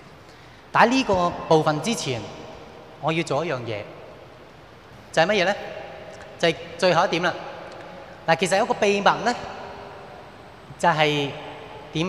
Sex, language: male, Chinese